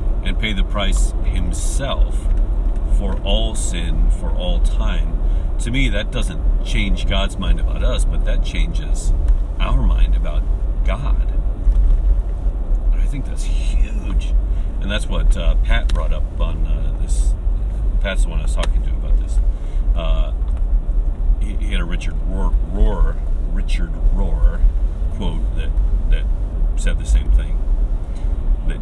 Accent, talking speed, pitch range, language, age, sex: American, 140 wpm, 70-85 Hz, English, 40-59, male